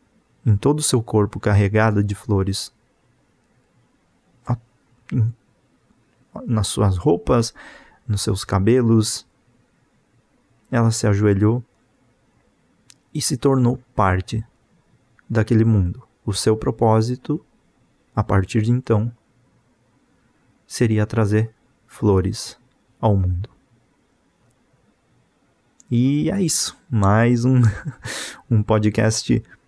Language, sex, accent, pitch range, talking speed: Portuguese, male, Brazilian, 110-125 Hz, 85 wpm